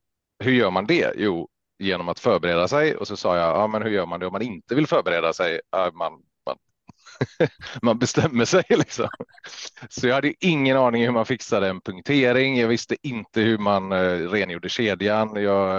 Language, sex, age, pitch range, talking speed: Swedish, male, 30-49, 90-110 Hz, 195 wpm